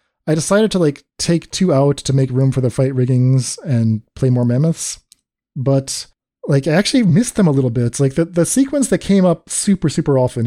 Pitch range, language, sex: 120-160 Hz, English, male